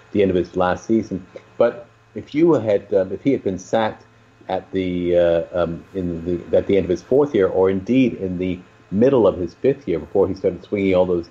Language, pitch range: English, 90-115 Hz